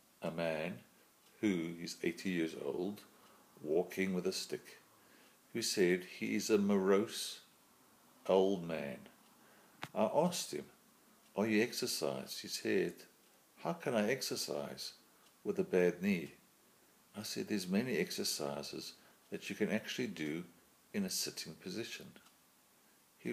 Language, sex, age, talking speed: English, male, 50-69, 130 wpm